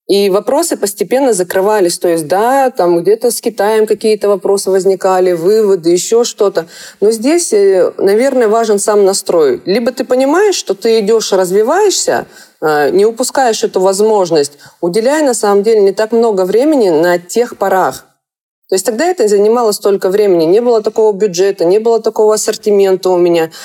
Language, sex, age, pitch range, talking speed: Russian, female, 30-49, 190-270 Hz, 155 wpm